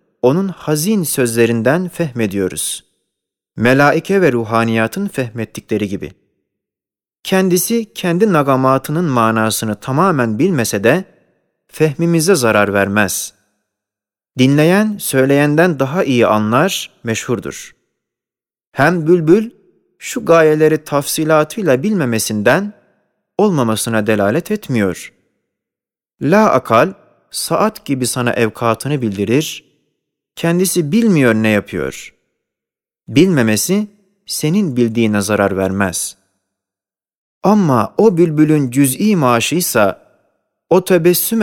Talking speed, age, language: 85 wpm, 30-49, Turkish